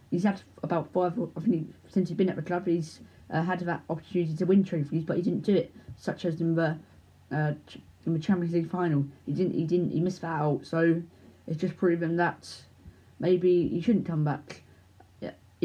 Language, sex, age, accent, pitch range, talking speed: English, female, 20-39, British, 155-185 Hz, 210 wpm